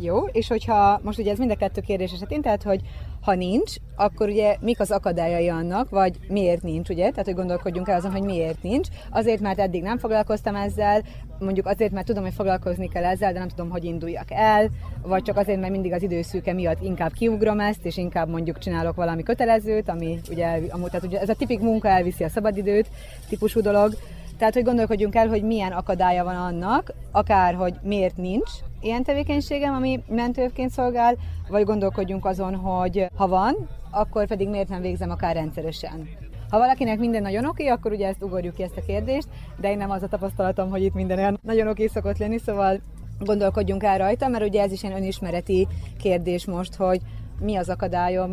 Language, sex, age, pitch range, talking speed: Hungarian, female, 30-49, 175-215 Hz, 195 wpm